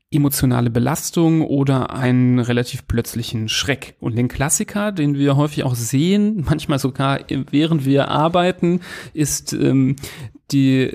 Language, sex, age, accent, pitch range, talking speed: German, male, 40-59, German, 125-150 Hz, 125 wpm